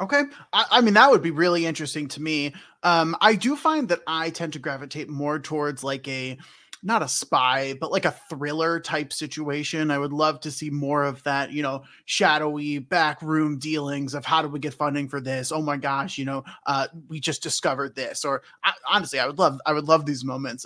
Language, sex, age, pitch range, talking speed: English, male, 20-39, 140-175 Hz, 220 wpm